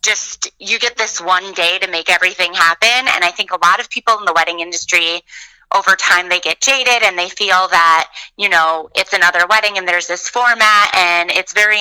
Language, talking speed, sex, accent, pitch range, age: English, 215 wpm, female, American, 165-200 Hz, 20-39